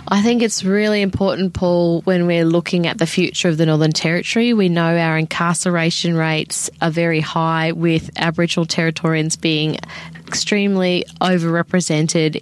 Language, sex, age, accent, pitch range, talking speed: English, female, 20-39, Australian, 155-175 Hz, 145 wpm